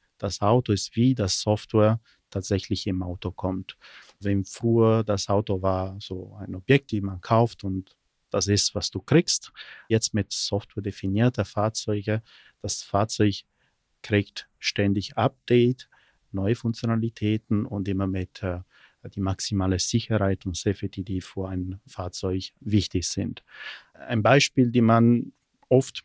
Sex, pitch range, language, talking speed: male, 95-115 Hz, German, 135 wpm